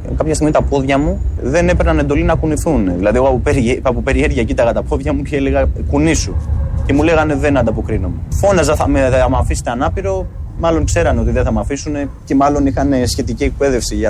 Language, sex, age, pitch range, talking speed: Greek, male, 20-39, 90-125 Hz, 195 wpm